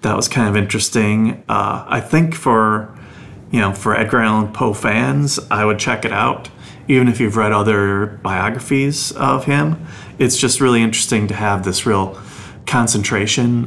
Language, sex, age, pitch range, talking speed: English, male, 30-49, 100-120 Hz, 165 wpm